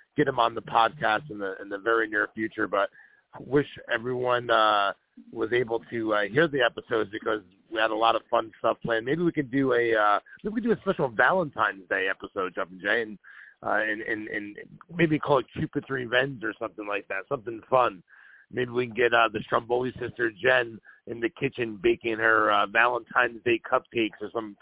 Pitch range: 110-130 Hz